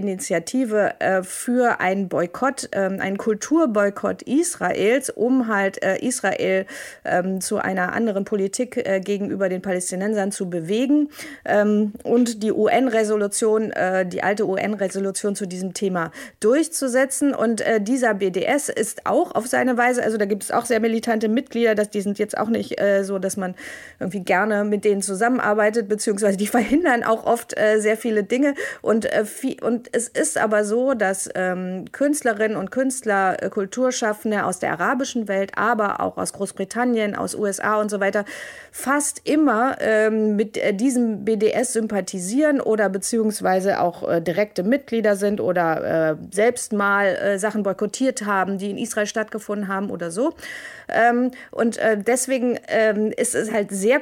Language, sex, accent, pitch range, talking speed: German, female, German, 195-240 Hz, 160 wpm